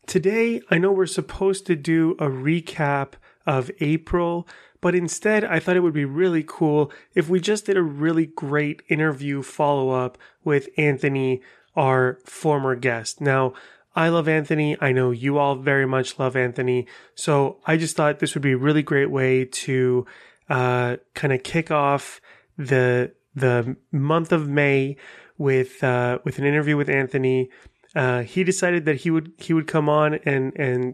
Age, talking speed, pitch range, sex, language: 30-49, 170 wpm, 130-160 Hz, male, English